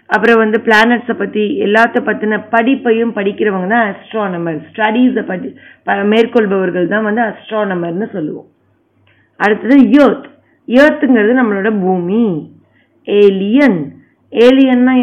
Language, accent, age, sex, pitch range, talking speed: Tamil, native, 30-49, female, 200-245 Hz, 95 wpm